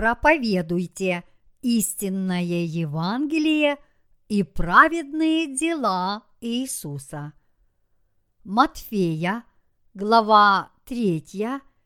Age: 50-69